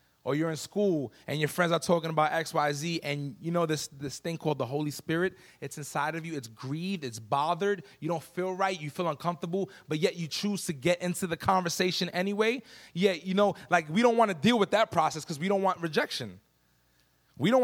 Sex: male